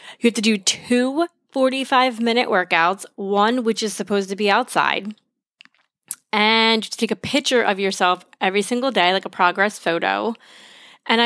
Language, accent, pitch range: English, American, 195-245 Hz